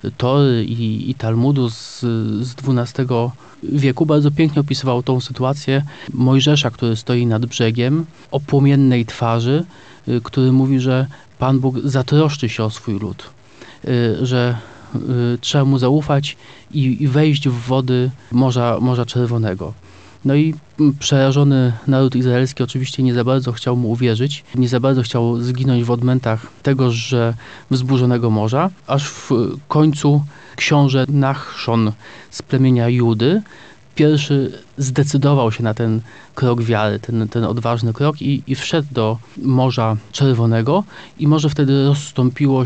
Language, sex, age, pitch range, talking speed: Polish, male, 30-49, 120-140 Hz, 135 wpm